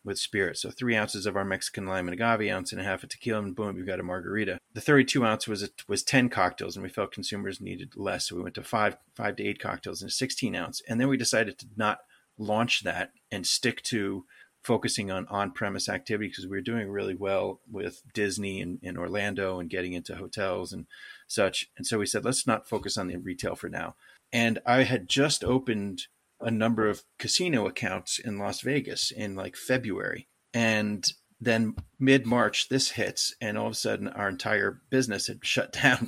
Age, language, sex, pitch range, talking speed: 30-49, English, male, 100-120 Hz, 210 wpm